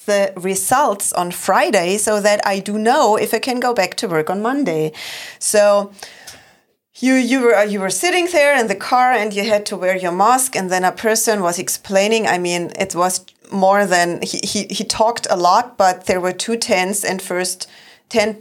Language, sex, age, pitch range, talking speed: English, female, 30-49, 190-255 Hz, 200 wpm